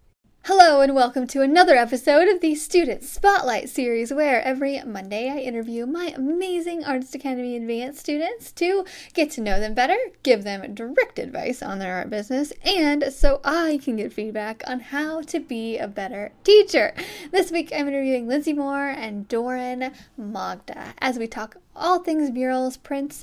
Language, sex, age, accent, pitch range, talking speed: English, female, 10-29, American, 225-315 Hz, 170 wpm